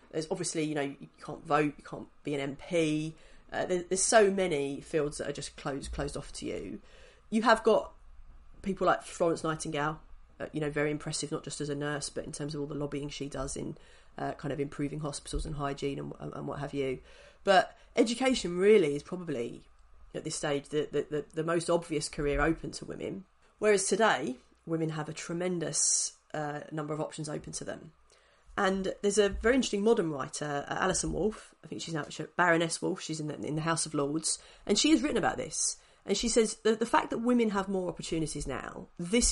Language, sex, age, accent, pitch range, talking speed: English, female, 30-49, British, 145-195 Hz, 210 wpm